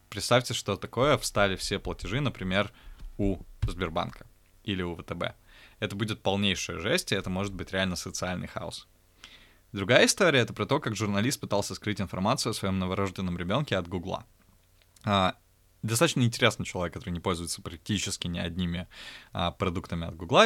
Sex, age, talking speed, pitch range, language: male, 20-39, 150 wpm, 90-110 Hz, Russian